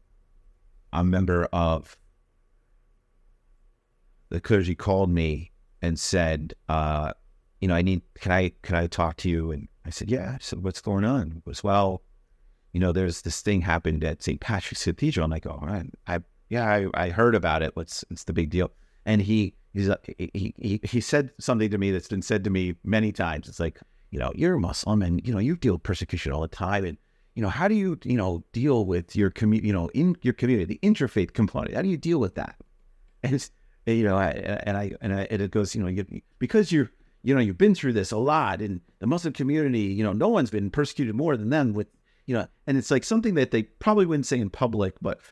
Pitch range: 85-115 Hz